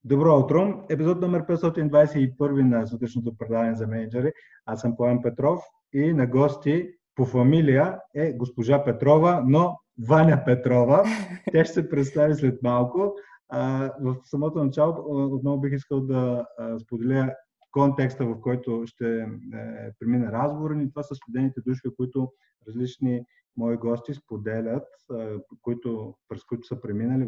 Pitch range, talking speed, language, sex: 115-140 Hz, 130 wpm, Bulgarian, male